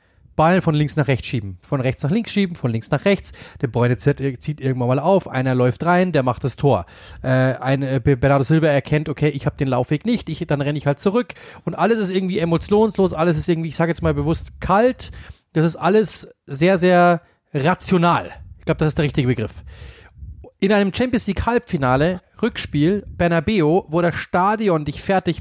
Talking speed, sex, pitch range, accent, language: 195 wpm, male, 140-170 Hz, German, German